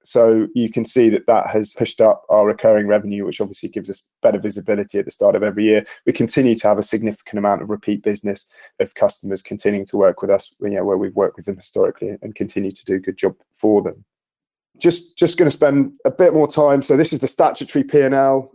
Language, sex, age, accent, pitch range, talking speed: English, male, 20-39, British, 105-135 Hz, 240 wpm